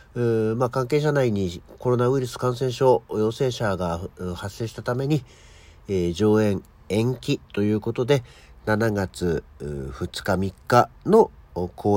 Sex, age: male, 50-69